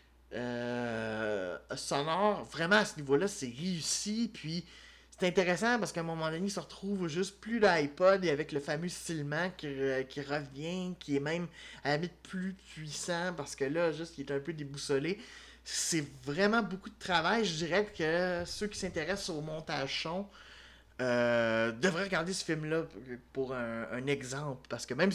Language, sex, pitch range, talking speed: French, male, 140-185 Hz, 175 wpm